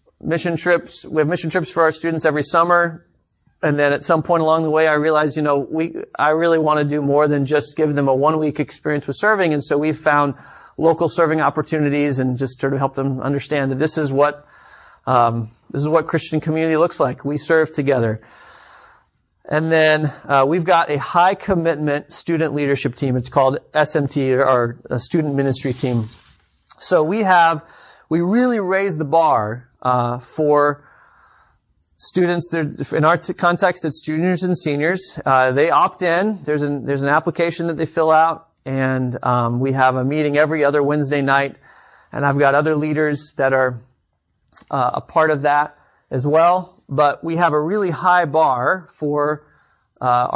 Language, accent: English, American